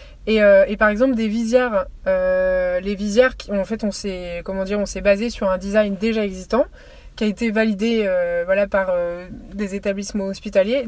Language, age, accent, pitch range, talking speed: French, 20-39, French, 200-240 Hz, 200 wpm